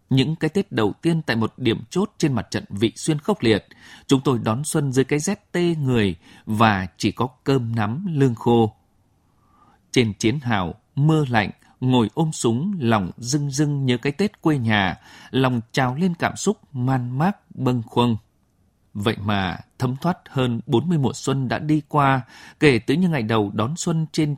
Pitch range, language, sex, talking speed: 105-145 Hz, Vietnamese, male, 190 wpm